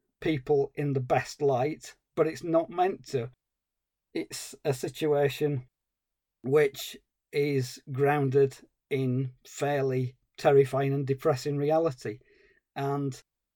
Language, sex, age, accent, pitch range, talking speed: English, male, 40-59, British, 130-150 Hz, 100 wpm